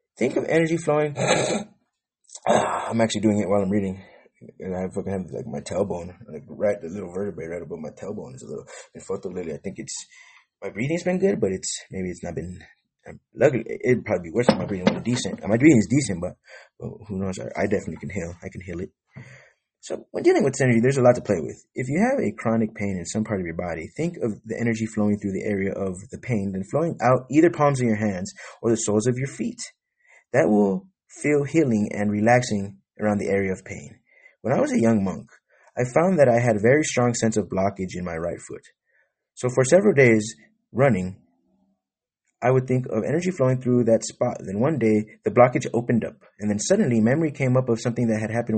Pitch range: 105-130 Hz